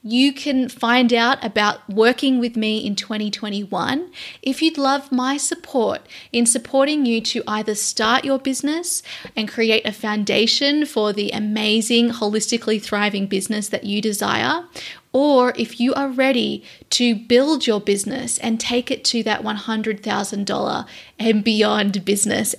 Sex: female